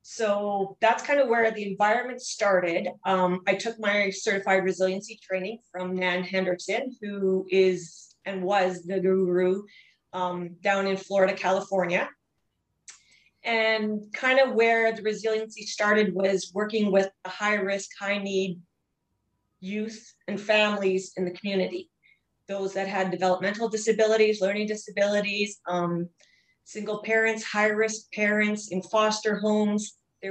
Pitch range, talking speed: 190-220 Hz, 125 wpm